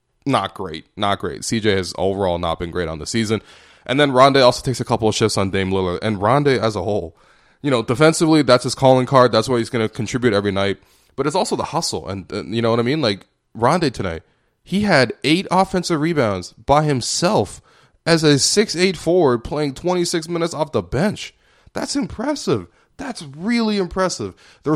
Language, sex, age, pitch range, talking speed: English, male, 20-39, 105-145 Hz, 200 wpm